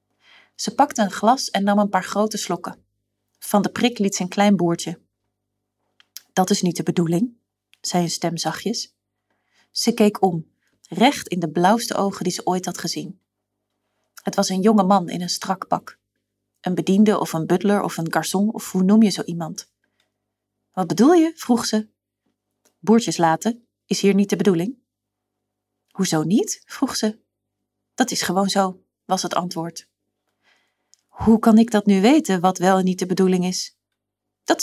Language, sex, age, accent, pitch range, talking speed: Dutch, female, 30-49, Dutch, 165-220 Hz, 175 wpm